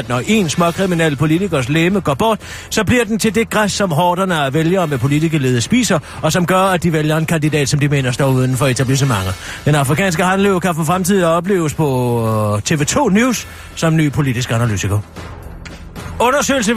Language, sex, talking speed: Danish, male, 185 wpm